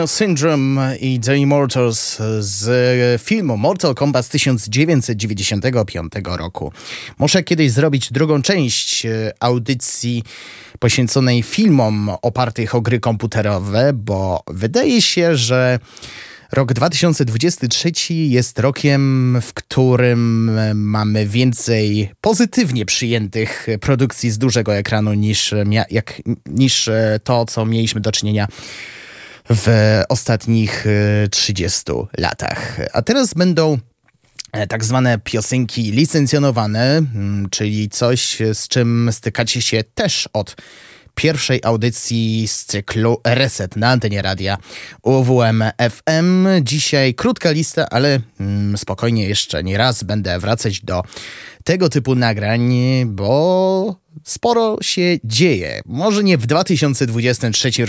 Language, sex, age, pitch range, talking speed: Polish, male, 20-39, 110-140 Hz, 105 wpm